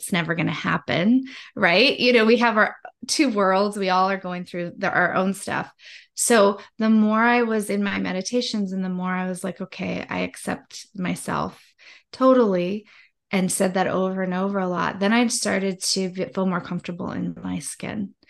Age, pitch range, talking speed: 20-39, 185-220 Hz, 195 wpm